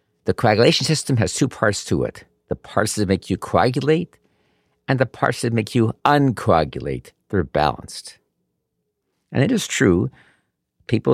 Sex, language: male, English